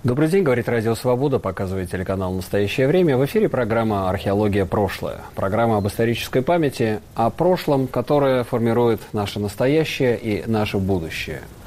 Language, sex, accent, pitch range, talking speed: Russian, male, native, 105-150 Hz, 140 wpm